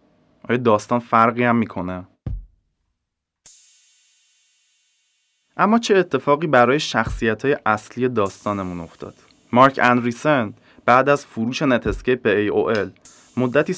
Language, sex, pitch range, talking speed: English, male, 105-135 Hz, 110 wpm